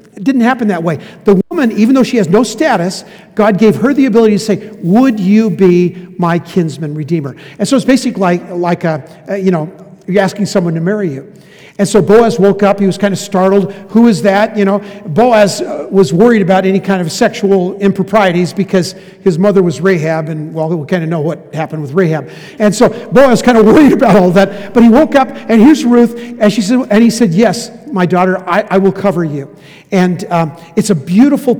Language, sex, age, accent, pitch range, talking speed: English, male, 50-69, American, 170-215 Hz, 220 wpm